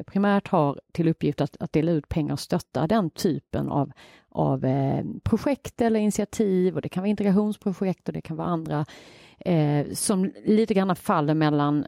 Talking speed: 170 wpm